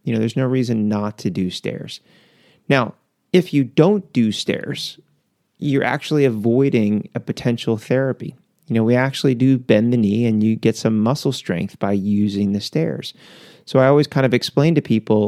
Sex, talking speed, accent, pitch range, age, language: male, 185 wpm, American, 105-135 Hz, 30-49, English